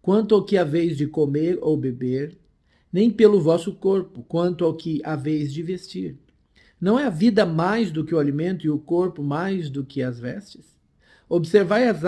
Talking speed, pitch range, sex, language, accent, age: 195 wpm, 150-205 Hz, male, Portuguese, Brazilian, 50-69